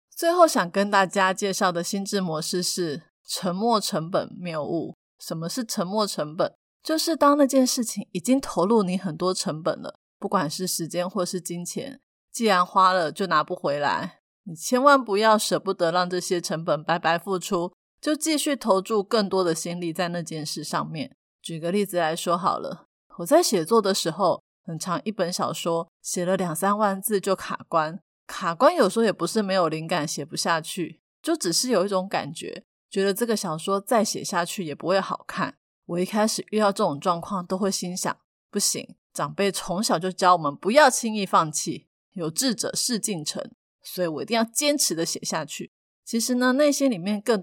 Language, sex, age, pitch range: Chinese, female, 30-49, 175-240 Hz